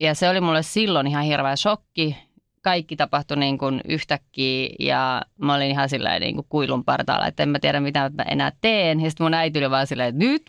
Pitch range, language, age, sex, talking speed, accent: 140-190 Hz, Finnish, 30-49, female, 205 wpm, native